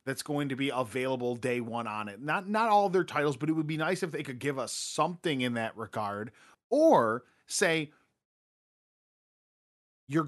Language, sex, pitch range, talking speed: English, male, 120-155 Hz, 185 wpm